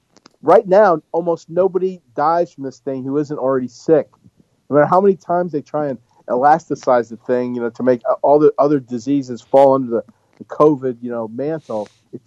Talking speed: 195 wpm